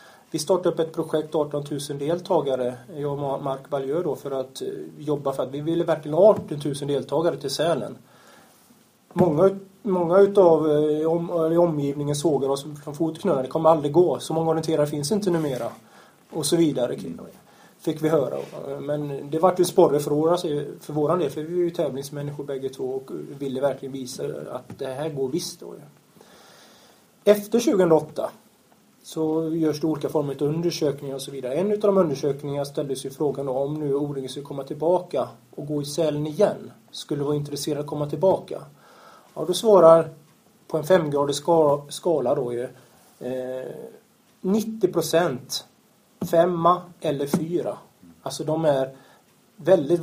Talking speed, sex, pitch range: 160 wpm, male, 140-170 Hz